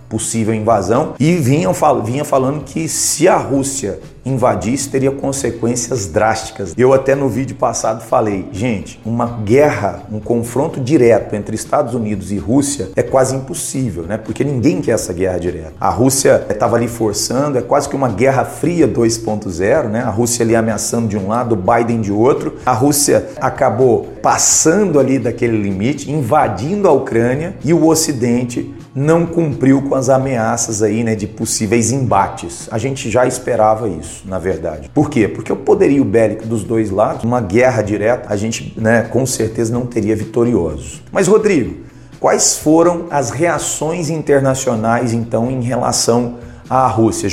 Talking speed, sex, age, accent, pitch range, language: 160 wpm, male, 40-59, Brazilian, 110-140 Hz, Portuguese